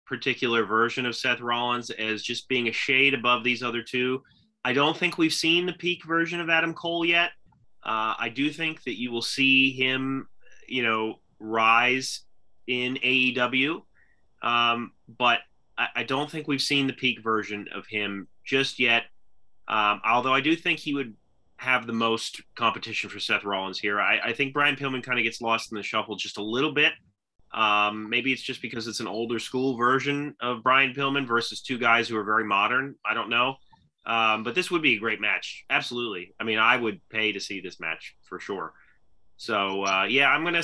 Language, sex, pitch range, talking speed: English, male, 110-140 Hz, 200 wpm